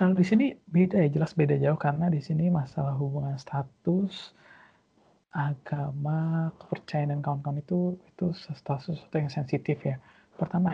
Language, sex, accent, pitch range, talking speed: Indonesian, male, native, 145-175 Hz, 140 wpm